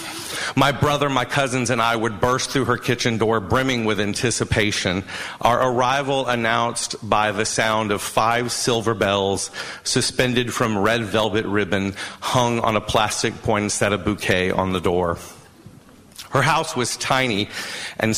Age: 40-59